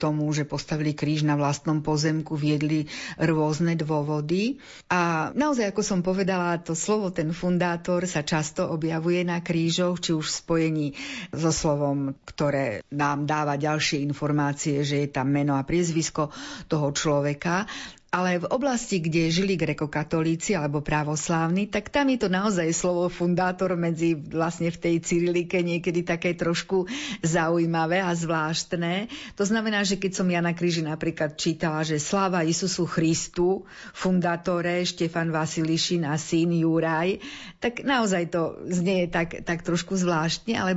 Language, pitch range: Slovak, 155-180 Hz